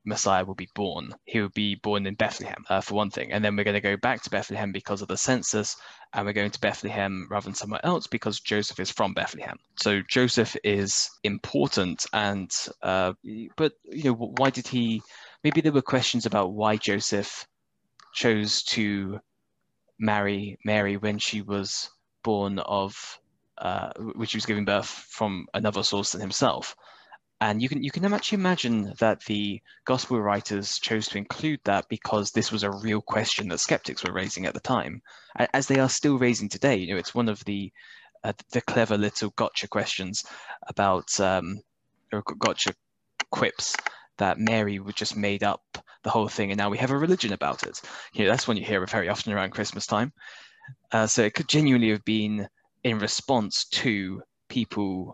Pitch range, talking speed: 100-115 Hz, 185 wpm